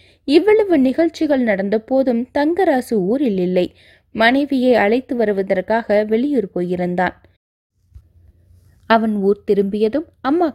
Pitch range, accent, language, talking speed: 175-255 Hz, native, Tamil, 90 wpm